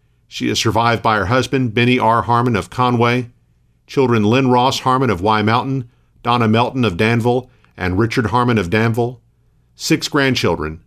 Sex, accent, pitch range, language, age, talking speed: male, American, 105-130 Hz, English, 50-69, 160 wpm